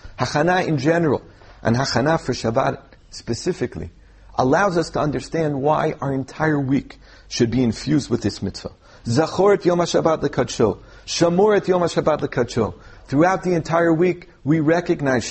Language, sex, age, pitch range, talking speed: English, male, 40-59, 110-155 Hz, 140 wpm